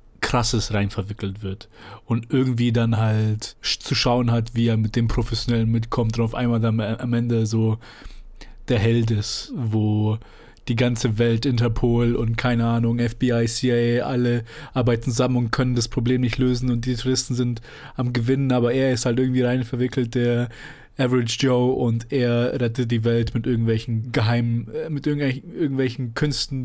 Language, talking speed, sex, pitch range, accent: German, 160 wpm, male, 115-135 Hz, German